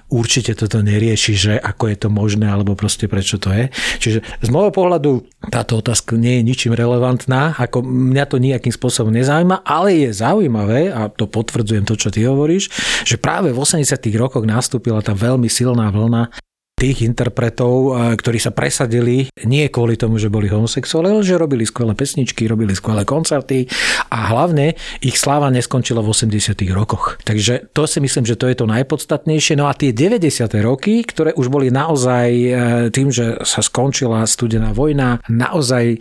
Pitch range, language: 115-135 Hz, Slovak